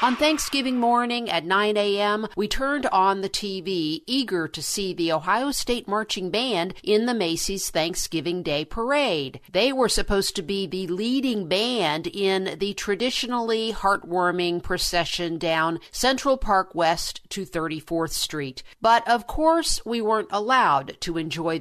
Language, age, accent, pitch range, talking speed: English, 50-69, American, 175-225 Hz, 145 wpm